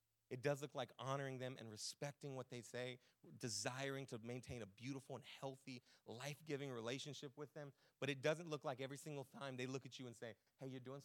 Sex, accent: male, American